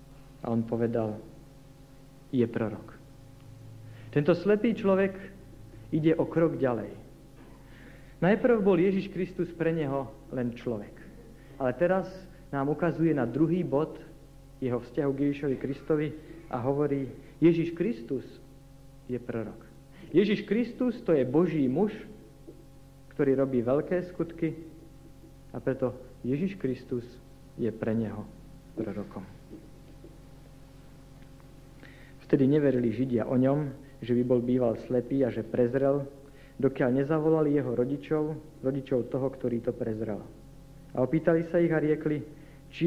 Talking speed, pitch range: 120 wpm, 130-160 Hz